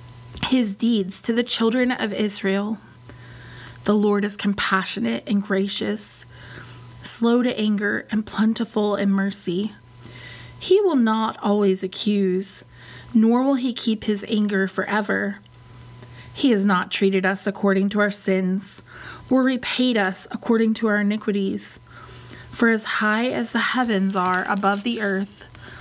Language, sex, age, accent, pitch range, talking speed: English, female, 20-39, American, 190-225 Hz, 135 wpm